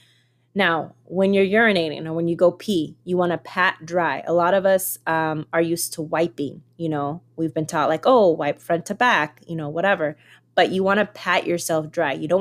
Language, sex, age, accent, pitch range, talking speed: English, female, 20-39, American, 155-190 Hz, 220 wpm